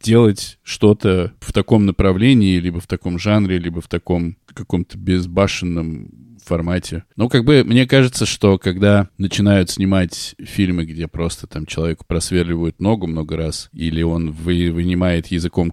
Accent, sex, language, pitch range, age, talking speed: native, male, Russian, 85-105 Hz, 20-39, 140 wpm